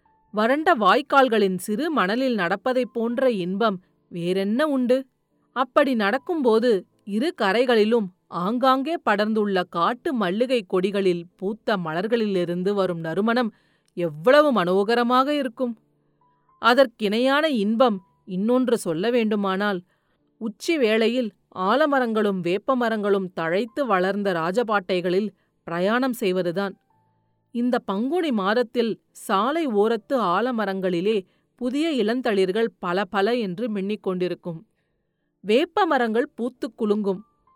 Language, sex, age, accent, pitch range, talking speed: Tamil, female, 40-59, native, 190-255 Hz, 90 wpm